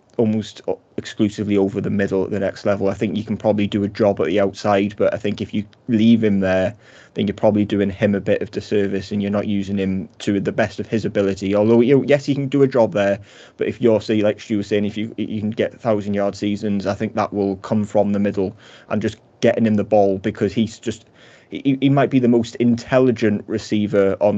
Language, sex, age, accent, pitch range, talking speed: English, male, 20-39, British, 100-110 Hz, 240 wpm